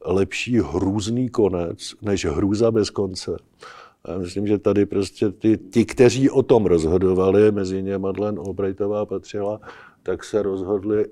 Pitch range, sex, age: 95-105 Hz, male, 50-69